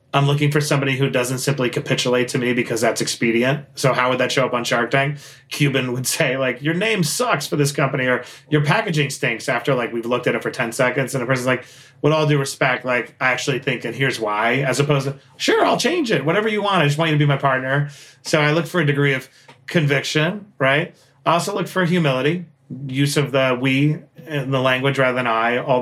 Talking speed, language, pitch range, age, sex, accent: 240 wpm, English, 125-150 Hz, 30-49, male, American